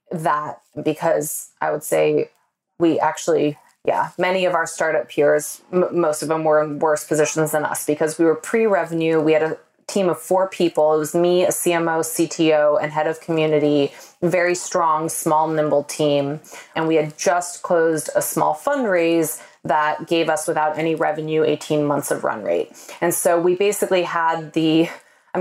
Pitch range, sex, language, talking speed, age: 150-175 Hz, female, English, 175 wpm, 20-39